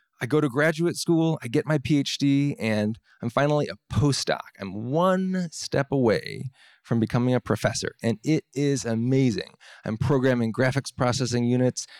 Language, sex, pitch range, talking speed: English, male, 125-155 Hz, 155 wpm